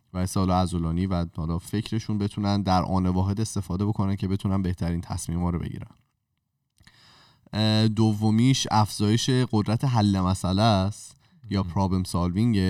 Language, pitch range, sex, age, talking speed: Persian, 95-110 Hz, male, 20-39, 130 wpm